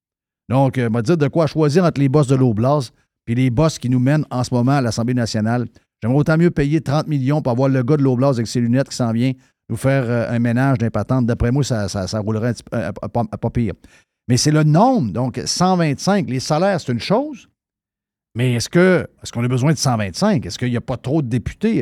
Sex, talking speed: male, 250 wpm